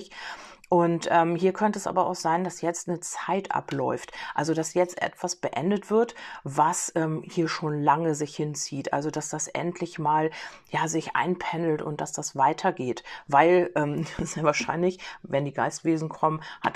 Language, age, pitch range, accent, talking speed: German, 40-59, 150-180 Hz, German, 175 wpm